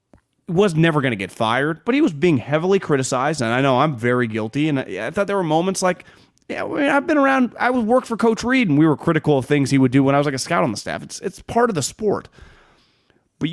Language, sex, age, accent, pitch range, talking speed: English, male, 30-49, American, 140-185 Hz, 265 wpm